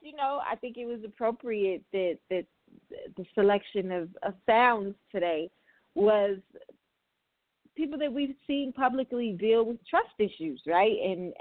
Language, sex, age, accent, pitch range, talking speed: English, female, 30-49, American, 195-265 Hz, 140 wpm